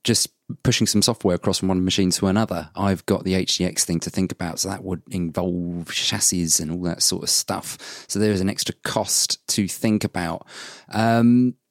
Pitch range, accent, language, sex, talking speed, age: 95-125 Hz, British, English, male, 200 wpm, 30-49